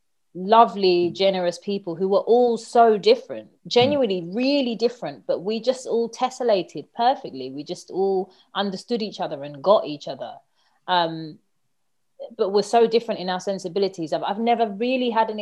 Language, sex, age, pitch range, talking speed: English, female, 30-49, 180-230 Hz, 160 wpm